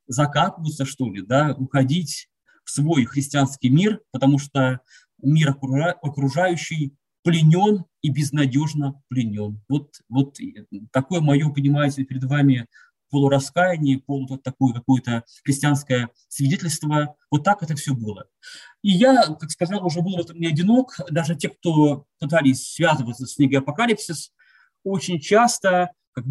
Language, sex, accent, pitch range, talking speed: Russian, male, native, 130-170 Hz, 125 wpm